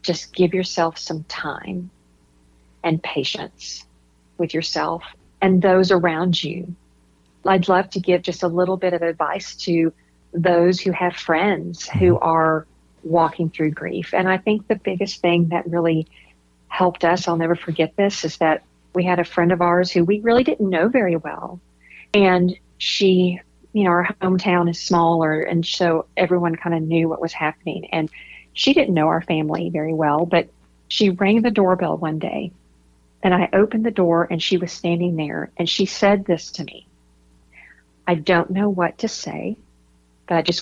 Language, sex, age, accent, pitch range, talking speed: English, female, 40-59, American, 160-185 Hz, 175 wpm